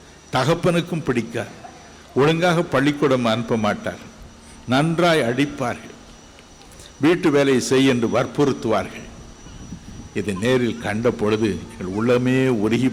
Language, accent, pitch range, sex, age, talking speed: Tamil, native, 105-145 Hz, male, 60-79, 95 wpm